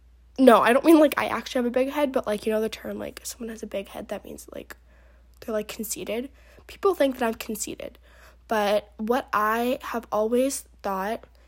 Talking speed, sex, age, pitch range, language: 210 wpm, female, 10-29, 200-245 Hz, English